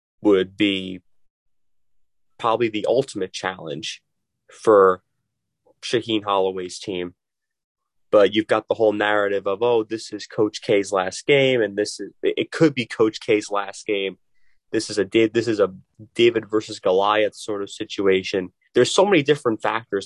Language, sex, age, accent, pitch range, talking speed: English, male, 30-49, American, 95-115 Hz, 155 wpm